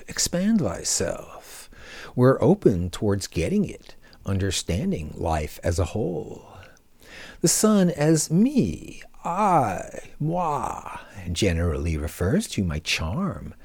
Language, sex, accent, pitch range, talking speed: English, male, American, 85-130 Hz, 100 wpm